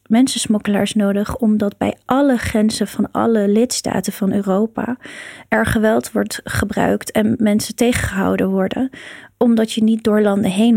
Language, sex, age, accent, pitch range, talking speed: Dutch, female, 20-39, Dutch, 200-230 Hz, 140 wpm